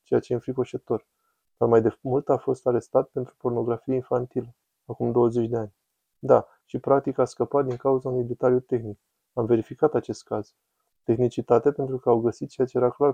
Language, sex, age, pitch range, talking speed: Romanian, male, 20-39, 120-135 Hz, 185 wpm